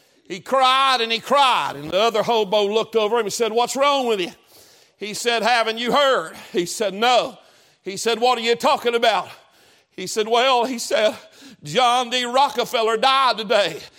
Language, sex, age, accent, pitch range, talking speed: English, male, 50-69, American, 230-280 Hz, 185 wpm